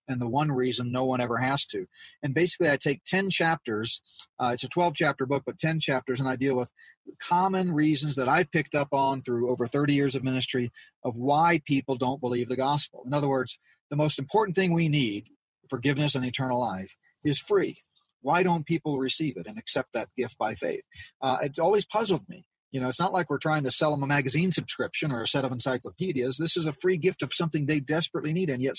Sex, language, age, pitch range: male, English, 40-59, 130-160 Hz